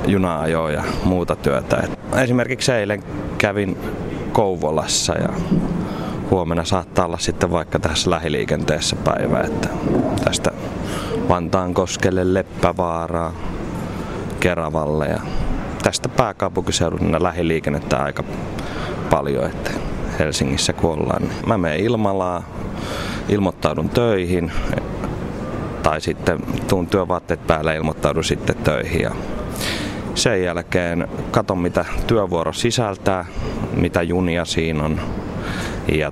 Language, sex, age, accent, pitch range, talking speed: Finnish, male, 30-49, native, 80-95 Hz, 95 wpm